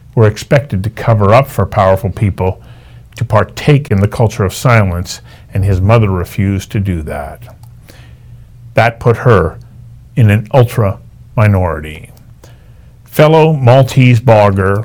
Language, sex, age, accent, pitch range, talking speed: English, male, 50-69, American, 100-125 Hz, 125 wpm